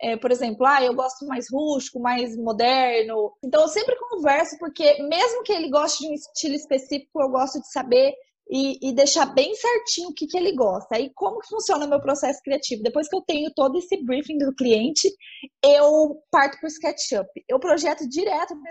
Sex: female